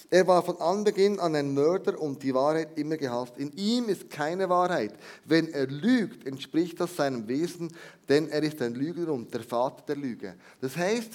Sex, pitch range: male, 145-195 Hz